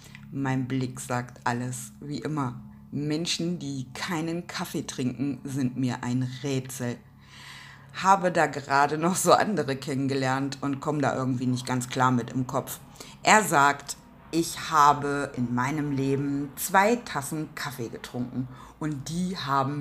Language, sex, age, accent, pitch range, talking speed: German, female, 50-69, German, 135-220 Hz, 140 wpm